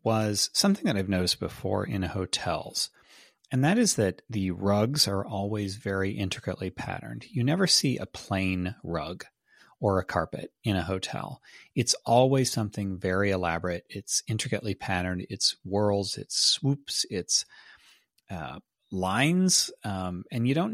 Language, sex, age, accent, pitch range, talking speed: English, male, 30-49, American, 95-125 Hz, 145 wpm